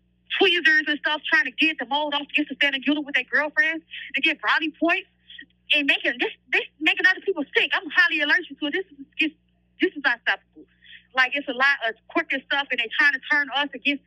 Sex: female